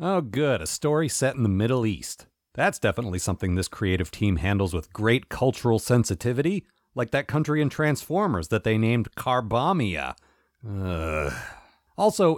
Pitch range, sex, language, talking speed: 105-155 Hz, male, English, 150 wpm